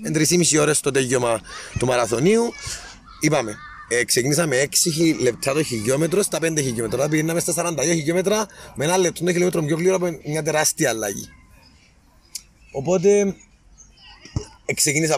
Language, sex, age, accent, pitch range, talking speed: Greek, male, 30-49, Spanish, 130-185 Hz, 135 wpm